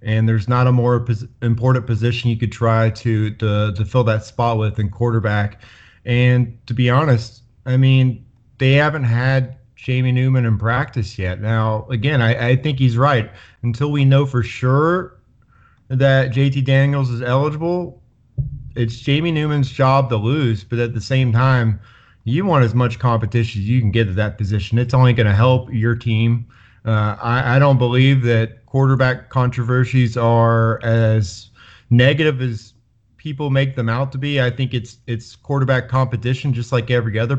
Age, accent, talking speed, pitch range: 30-49, American, 175 wpm, 115-130 Hz